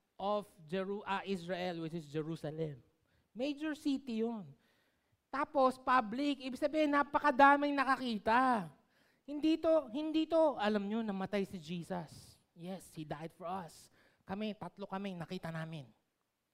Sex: male